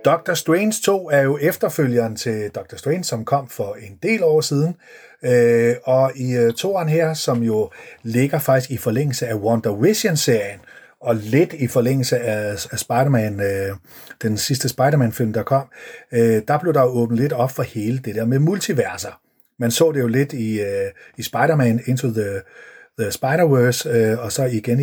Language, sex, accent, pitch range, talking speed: Danish, male, native, 110-150 Hz, 160 wpm